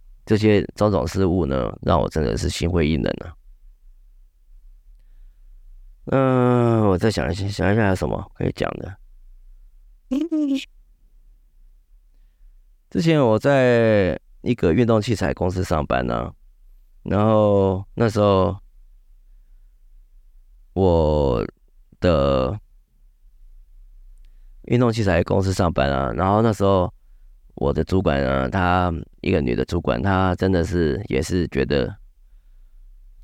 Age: 30-49